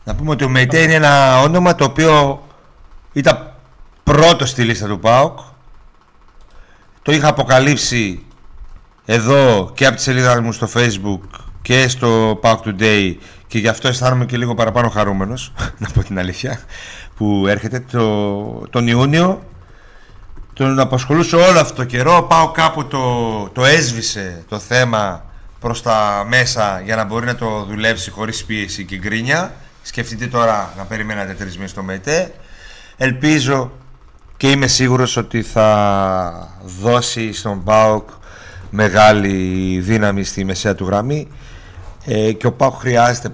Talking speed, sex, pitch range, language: 140 wpm, male, 100-130 Hz, Greek